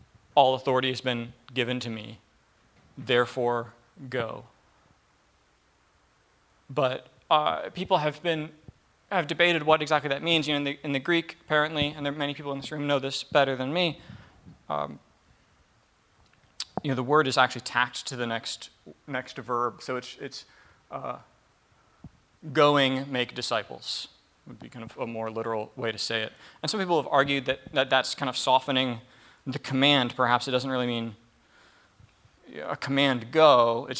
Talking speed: 170 wpm